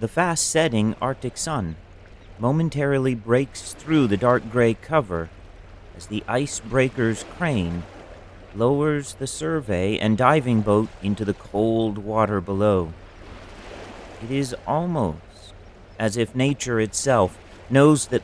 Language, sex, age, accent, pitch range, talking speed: English, male, 40-59, American, 95-135 Hz, 115 wpm